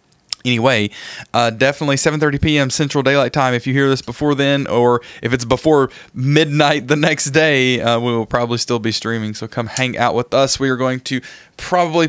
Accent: American